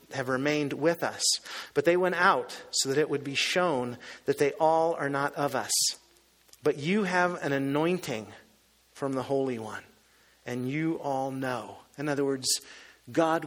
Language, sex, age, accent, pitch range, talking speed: English, male, 40-59, American, 135-175 Hz, 170 wpm